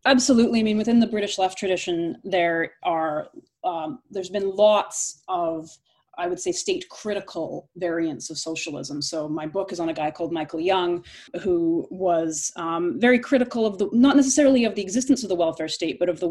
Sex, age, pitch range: female, 30-49, 170-230 Hz